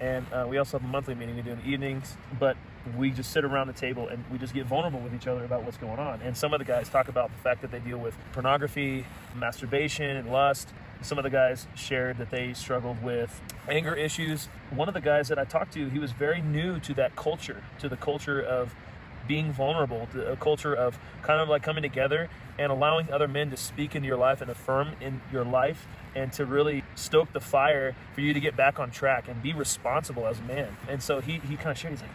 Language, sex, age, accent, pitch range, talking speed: English, male, 30-49, American, 125-150 Hz, 245 wpm